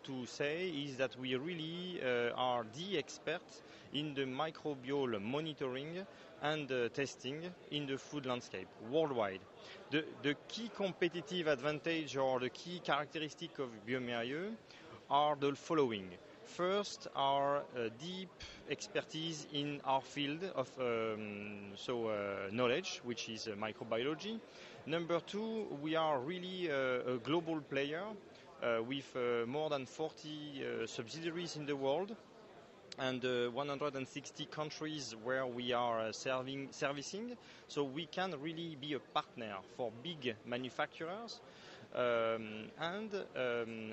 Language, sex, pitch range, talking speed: English, male, 125-160 Hz, 130 wpm